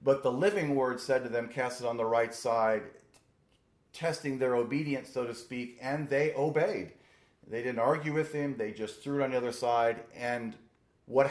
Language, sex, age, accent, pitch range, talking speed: English, male, 40-59, American, 115-135 Hz, 195 wpm